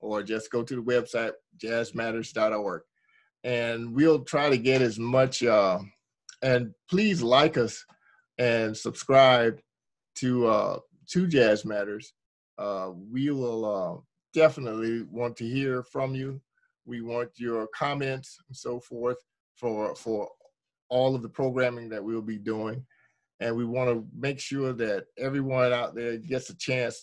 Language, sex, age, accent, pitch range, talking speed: English, male, 50-69, American, 115-130 Hz, 140 wpm